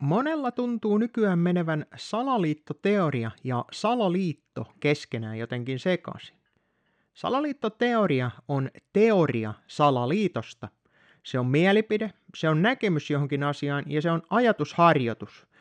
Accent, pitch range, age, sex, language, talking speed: native, 145-215 Hz, 30-49, male, Finnish, 100 wpm